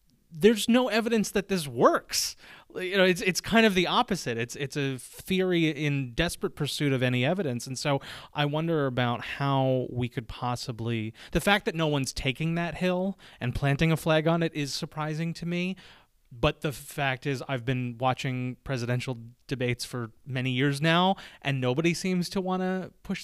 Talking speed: 185 wpm